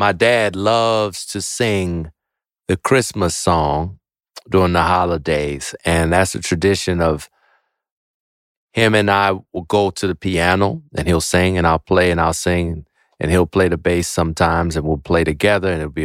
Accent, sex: American, male